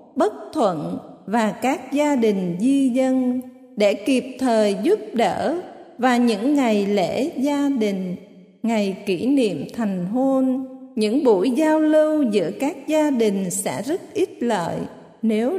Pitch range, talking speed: 205-275 Hz, 140 wpm